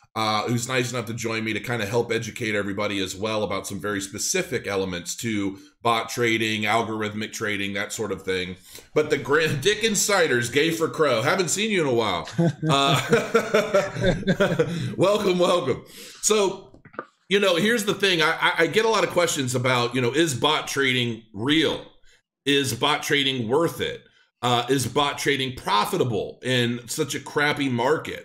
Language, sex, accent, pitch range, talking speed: English, male, American, 115-160 Hz, 175 wpm